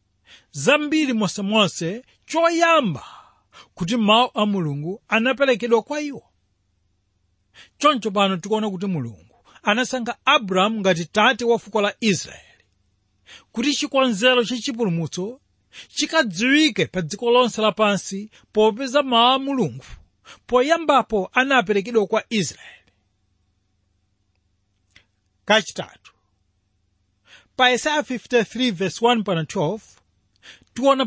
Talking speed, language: 80 wpm, English